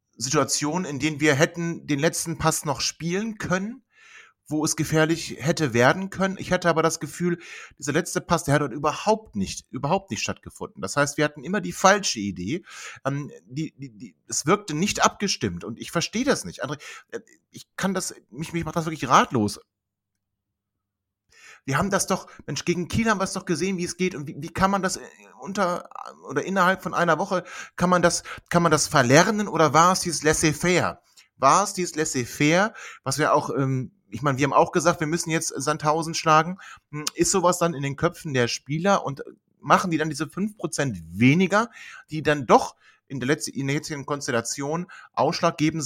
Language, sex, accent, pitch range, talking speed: German, male, German, 140-180 Hz, 180 wpm